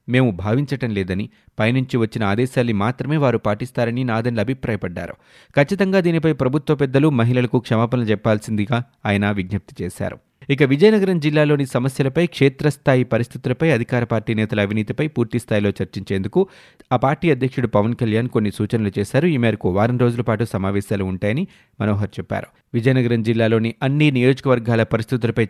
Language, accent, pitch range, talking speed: Telugu, native, 110-135 Hz, 130 wpm